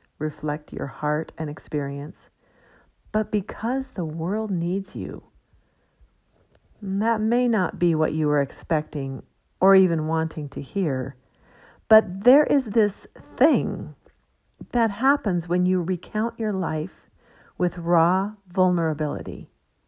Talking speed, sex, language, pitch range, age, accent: 120 wpm, female, English, 155-210 Hz, 50-69, American